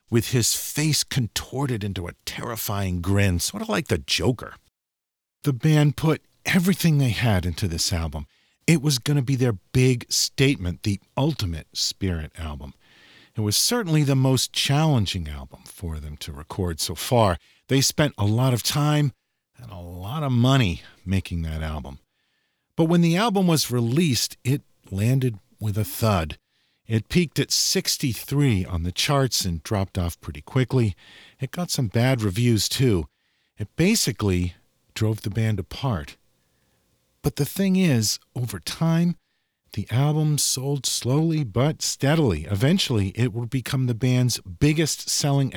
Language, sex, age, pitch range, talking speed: English, male, 50-69, 100-145 Hz, 150 wpm